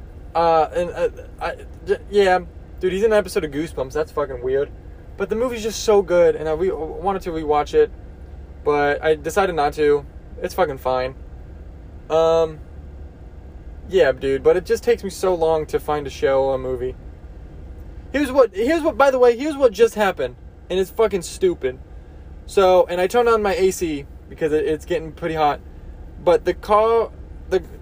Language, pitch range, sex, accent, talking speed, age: English, 140-200 Hz, male, American, 185 wpm, 20-39